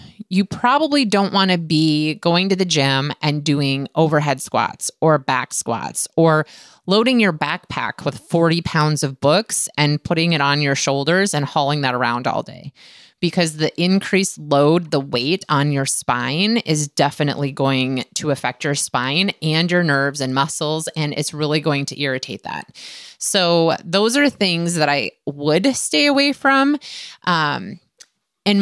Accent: American